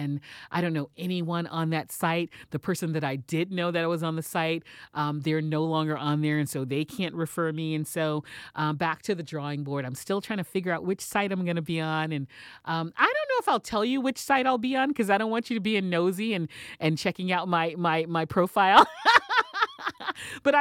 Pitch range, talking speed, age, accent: 155-205 Hz, 245 wpm, 40-59, American